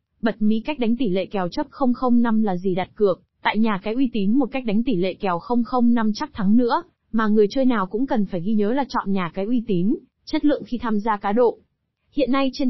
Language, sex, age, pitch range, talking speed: Vietnamese, female, 20-39, 200-250 Hz, 250 wpm